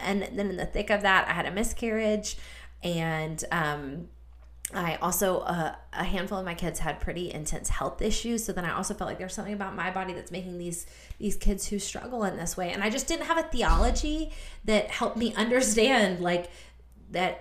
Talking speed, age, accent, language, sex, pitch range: 205 wpm, 20-39, American, English, female, 160-205 Hz